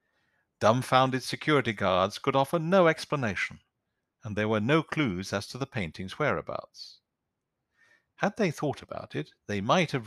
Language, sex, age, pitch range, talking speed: English, male, 50-69, 100-130 Hz, 150 wpm